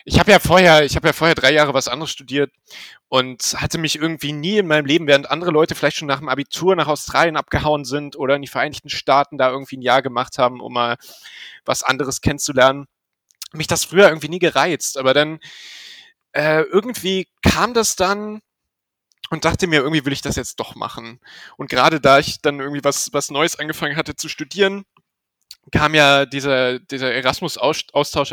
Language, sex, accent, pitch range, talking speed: German, male, German, 130-160 Hz, 185 wpm